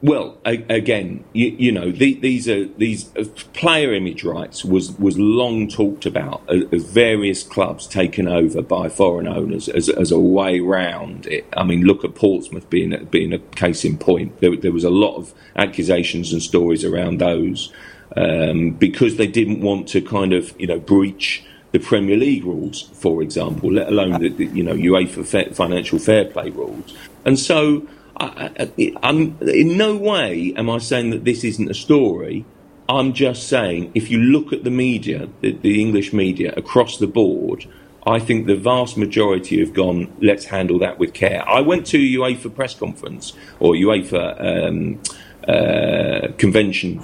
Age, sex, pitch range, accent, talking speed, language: 40-59, male, 95-120 Hz, British, 170 wpm, English